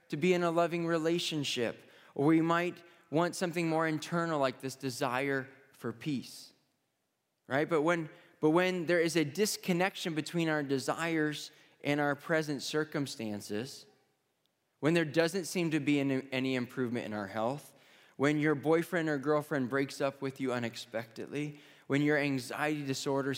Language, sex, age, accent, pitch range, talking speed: English, male, 20-39, American, 120-155 Hz, 155 wpm